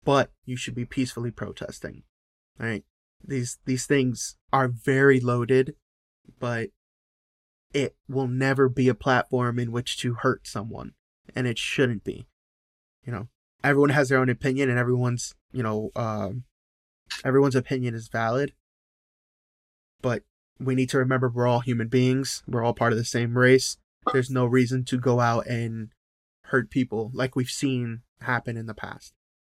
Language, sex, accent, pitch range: English, male, American, 115-130 Hz